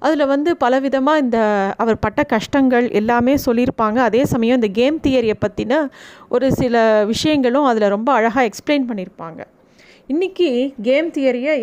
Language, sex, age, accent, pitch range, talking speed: Tamil, female, 30-49, native, 215-270 Hz, 135 wpm